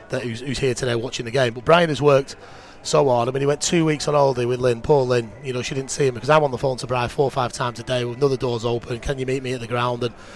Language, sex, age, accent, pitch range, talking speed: English, male, 30-49, British, 120-140 Hz, 320 wpm